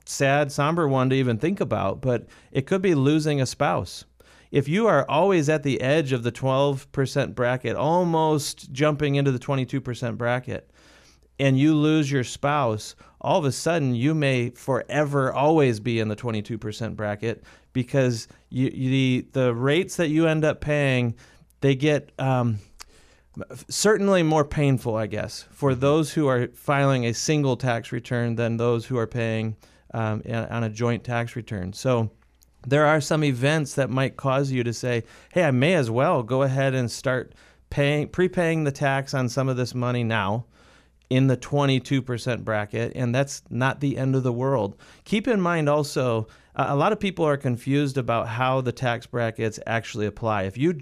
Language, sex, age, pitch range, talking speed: English, male, 30-49, 120-145 Hz, 175 wpm